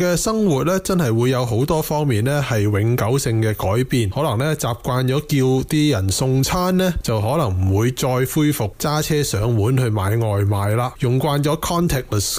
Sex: male